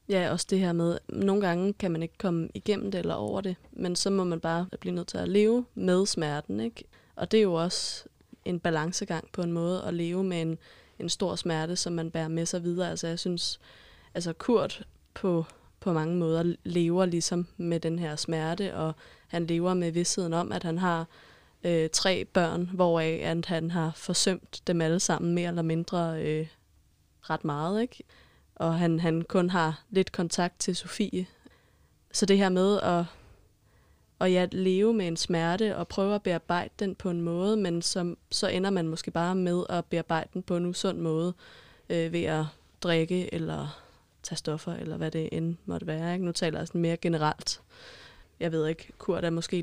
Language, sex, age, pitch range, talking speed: Danish, female, 20-39, 165-185 Hz, 190 wpm